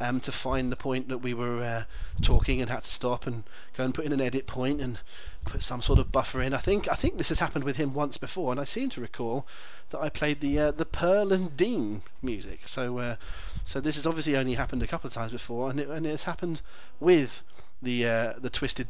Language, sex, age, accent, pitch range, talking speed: English, male, 30-49, British, 120-145 Hz, 250 wpm